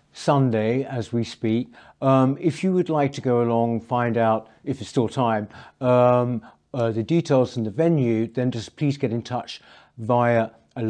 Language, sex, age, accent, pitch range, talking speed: English, male, 60-79, British, 115-145 Hz, 180 wpm